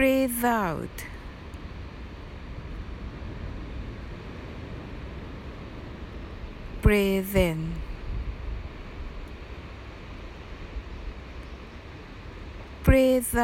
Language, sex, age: Japanese, female, 60-79